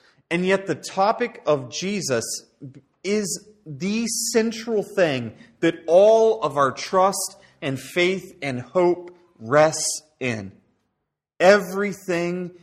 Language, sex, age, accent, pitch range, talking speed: English, male, 30-49, American, 140-195 Hz, 105 wpm